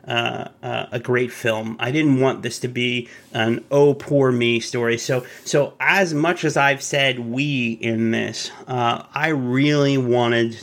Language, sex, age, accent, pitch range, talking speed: English, male, 30-49, American, 120-140 Hz, 170 wpm